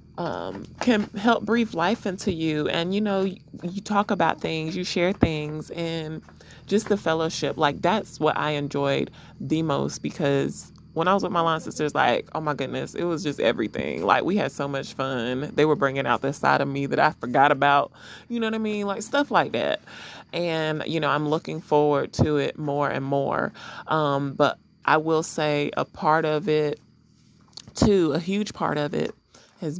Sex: male